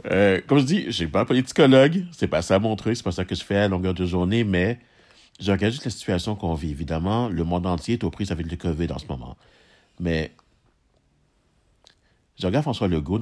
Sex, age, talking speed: male, 60-79, 225 wpm